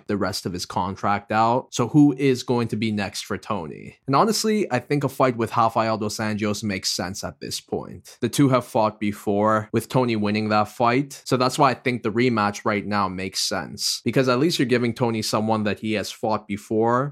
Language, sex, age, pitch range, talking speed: English, male, 20-39, 105-125 Hz, 220 wpm